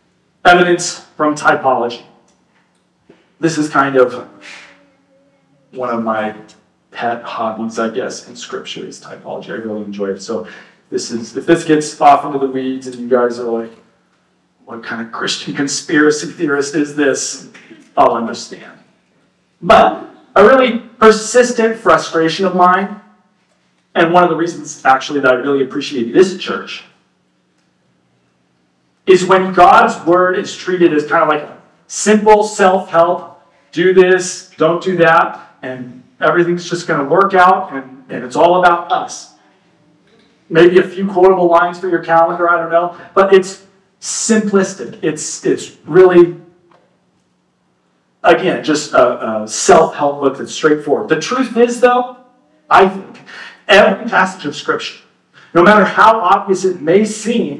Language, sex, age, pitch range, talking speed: English, male, 40-59, 130-185 Hz, 145 wpm